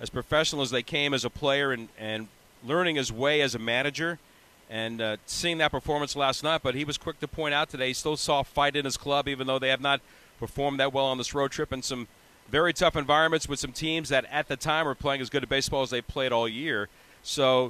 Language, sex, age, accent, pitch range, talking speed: English, male, 40-59, American, 130-155 Hz, 255 wpm